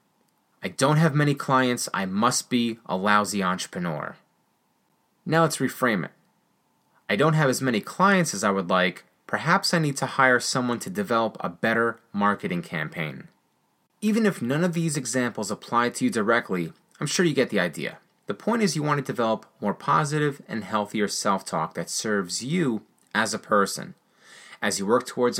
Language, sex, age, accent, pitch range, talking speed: English, male, 30-49, American, 115-160 Hz, 175 wpm